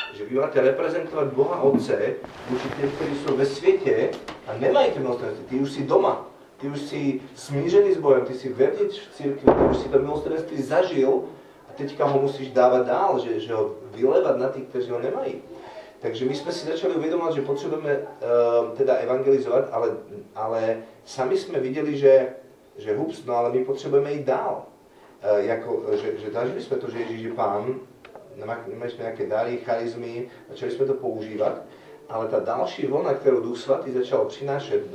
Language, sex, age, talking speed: Slovak, male, 30-49, 175 wpm